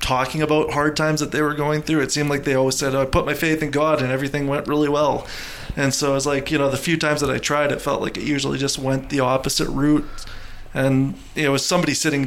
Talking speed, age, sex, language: 265 wpm, 30-49, male, English